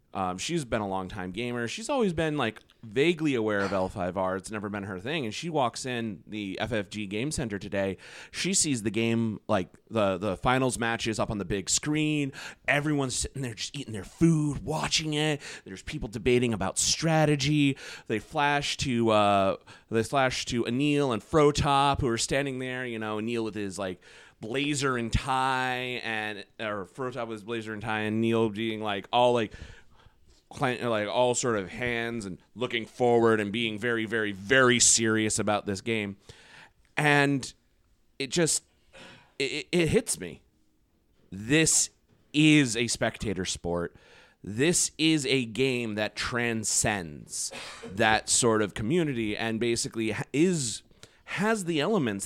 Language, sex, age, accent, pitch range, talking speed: English, male, 30-49, American, 105-140 Hz, 160 wpm